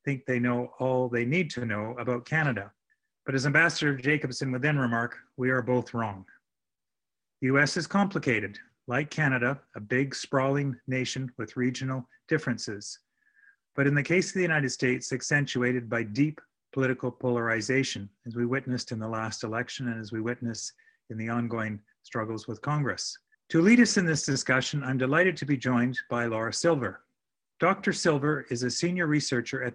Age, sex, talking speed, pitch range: 40-59, male, 170 wpm, 120-150 Hz